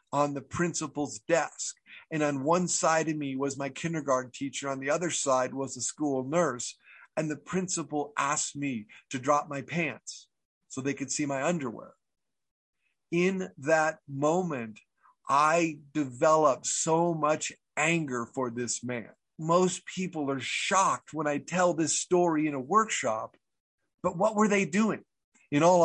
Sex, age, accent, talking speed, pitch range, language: male, 50-69, American, 155 wpm, 140-175 Hz, English